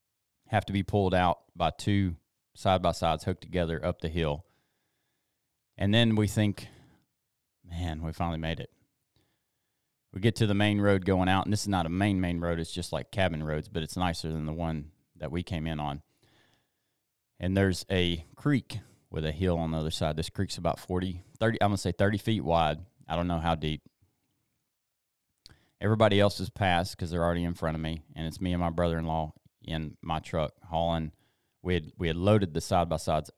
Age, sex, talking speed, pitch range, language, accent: 30-49, male, 200 wpm, 80-100 Hz, English, American